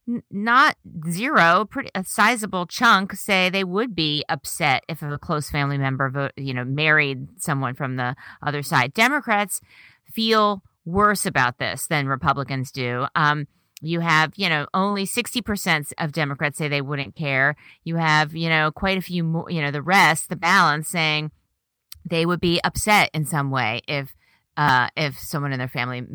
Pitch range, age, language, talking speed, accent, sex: 140-175 Hz, 30-49, English, 175 wpm, American, female